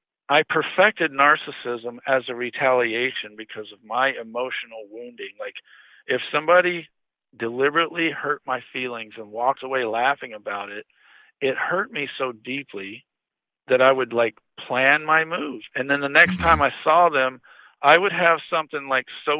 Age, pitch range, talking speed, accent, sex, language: 50-69, 120-160 Hz, 155 wpm, American, male, English